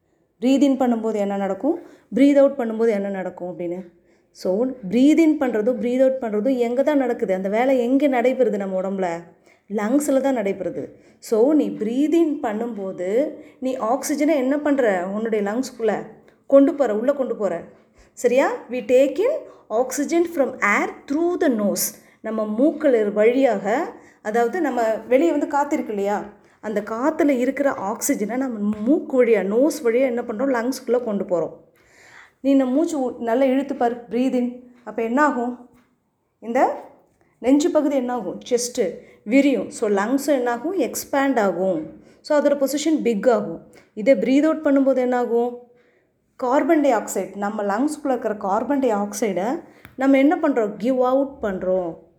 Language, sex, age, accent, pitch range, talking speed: Tamil, female, 20-39, native, 215-275 Hz, 135 wpm